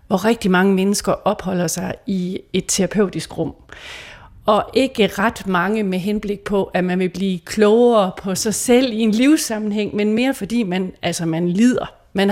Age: 40-59